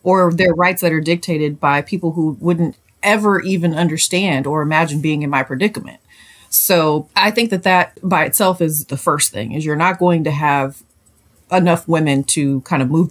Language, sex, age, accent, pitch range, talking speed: English, female, 30-49, American, 150-200 Hz, 190 wpm